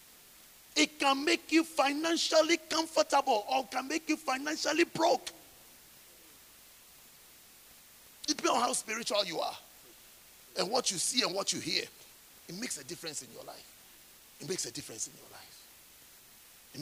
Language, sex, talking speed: English, male, 150 wpm